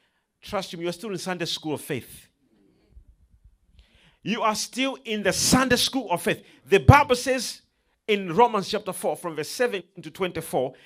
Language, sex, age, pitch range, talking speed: English, male, 40-59, 150-255 Hz, 170 wpm